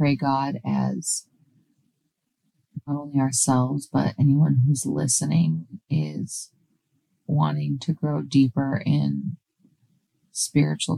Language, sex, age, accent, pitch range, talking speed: English, female, 30-49, American, 135-160 Hz, 95 wpm